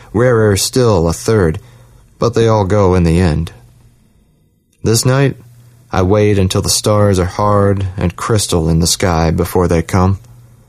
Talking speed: 155 wpm